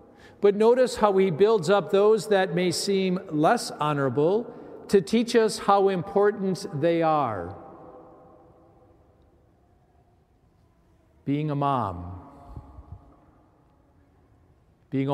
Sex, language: male, English